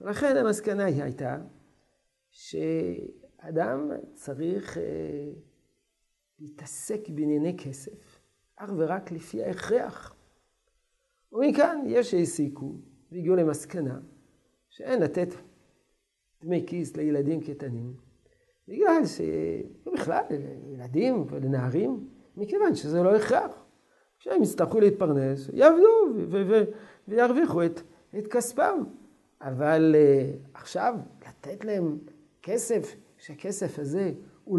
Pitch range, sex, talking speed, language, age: 140-200 Hz, male, 90 wpm, Hebrew, 50-69